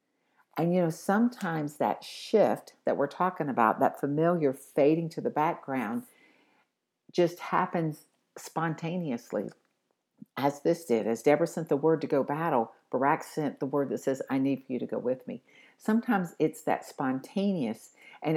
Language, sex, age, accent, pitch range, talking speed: English, female, 60-79, American, 140-195 Hz, 160 wpm